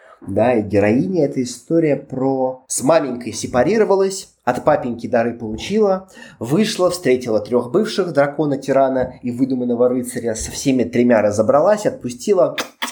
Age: 20-39